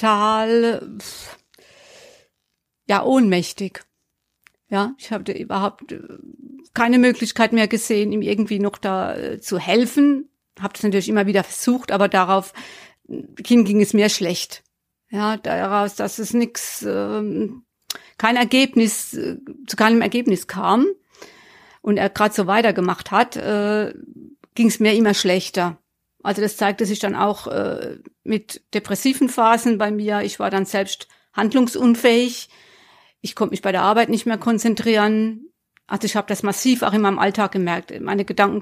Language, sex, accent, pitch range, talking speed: German, female, German, 200-240 Hz, 140 wpm